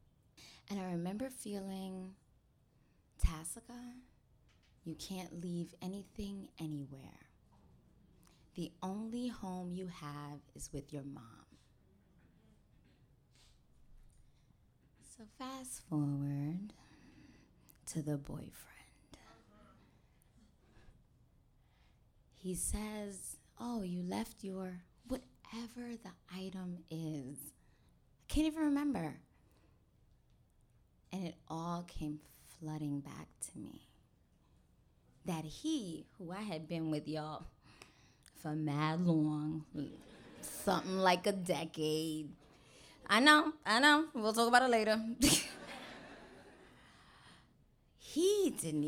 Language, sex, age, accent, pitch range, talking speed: English, female, 20-39, American, 155-225 Hz, 90 wpm